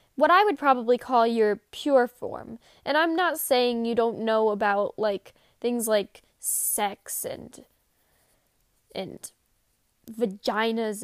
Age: 10-29